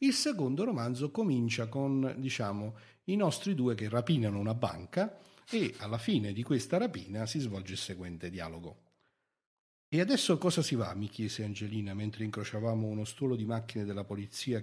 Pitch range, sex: 105-145 Hz, male